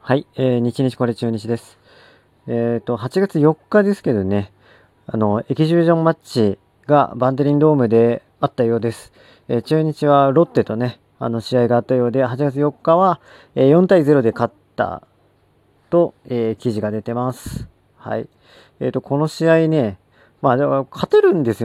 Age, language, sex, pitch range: 40-59, Japanese, male, 110-150 Hz